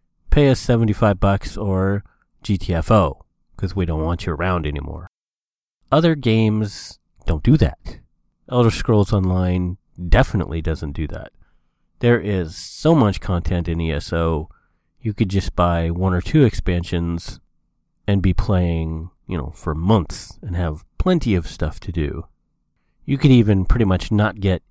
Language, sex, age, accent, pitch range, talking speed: English, male, 30-49, American, 85-110 Hz, 150 wpm